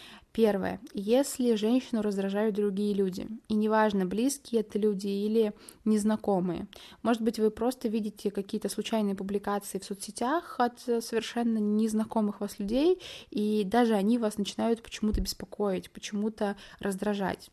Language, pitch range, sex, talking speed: Russian, 195-225 Hz, female, 125 wpm